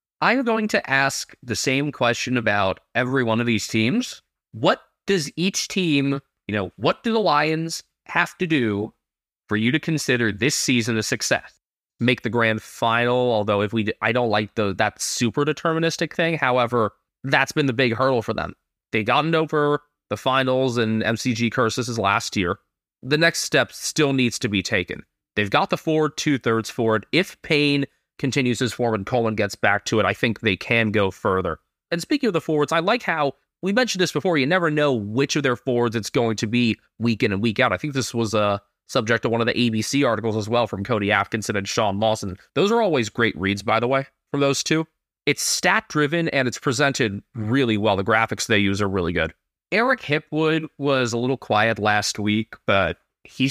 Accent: American